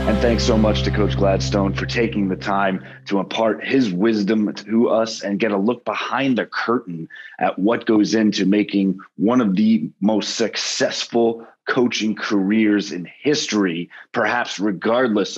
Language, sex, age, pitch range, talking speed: English, male, 30-49, 100-120 Hz, 155 wpm